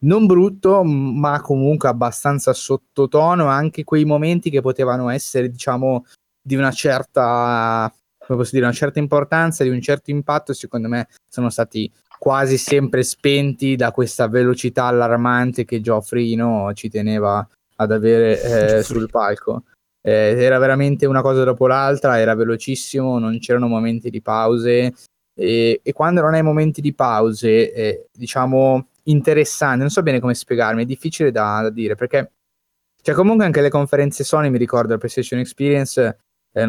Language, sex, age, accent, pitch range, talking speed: Italian, male, 20-39, native, 115-145 Hz, 145 wpm